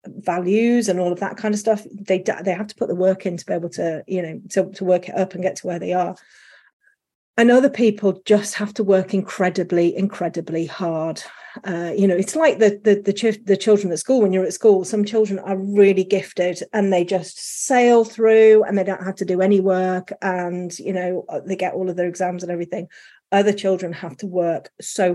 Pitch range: 180-210 Hz